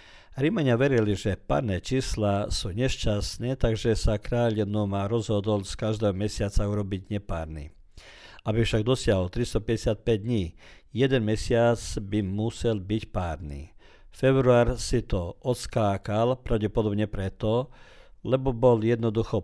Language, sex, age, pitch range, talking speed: Croatian, male, 50-69, 100-120 Hz, 120 wpm